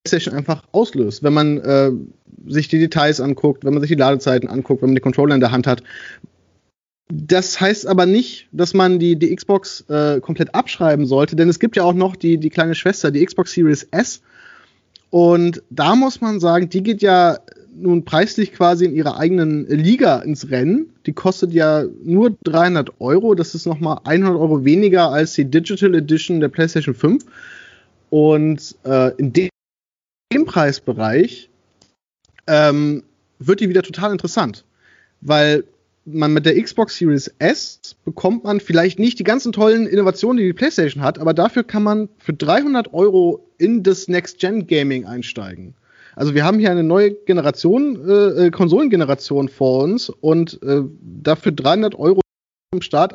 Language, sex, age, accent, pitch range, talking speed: German, male, 30-49, German, 150-195 Hz, 165 wpm